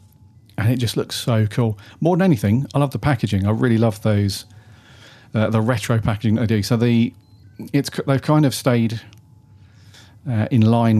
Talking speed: 180 wpm